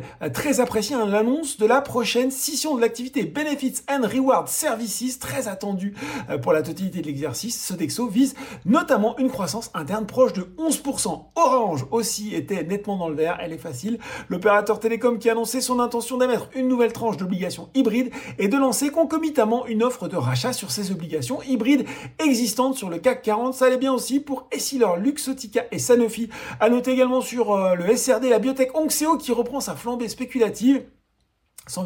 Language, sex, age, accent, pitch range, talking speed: French, male, 40-59, French, 190-260 Hz, 175 wpm